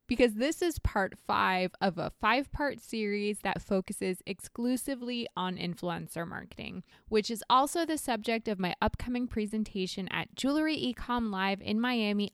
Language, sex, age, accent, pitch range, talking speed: English, female, 20-39, American, 185-250 Hz, 145 wpm